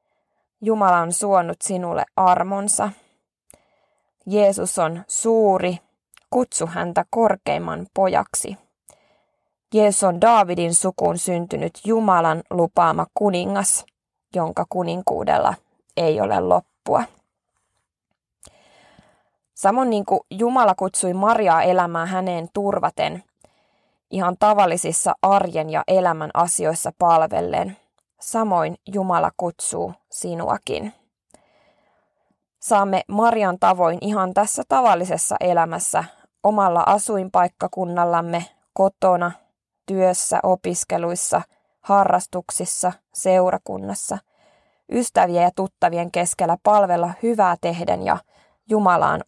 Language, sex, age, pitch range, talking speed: Finnish, female, 20-39, 170-200 Hz, 85 wpm